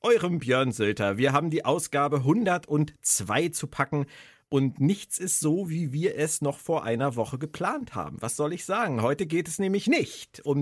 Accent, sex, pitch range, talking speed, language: German, male, 115-160 Hz, 185 wpm, German